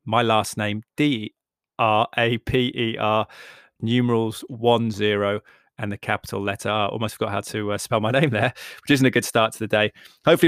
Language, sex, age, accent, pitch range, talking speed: English, male, 20-39, British, 105-120 Hz, 170 wpm